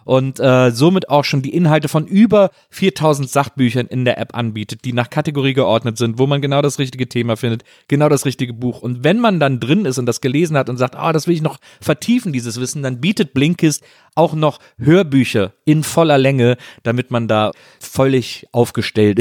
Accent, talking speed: German, 205 wpm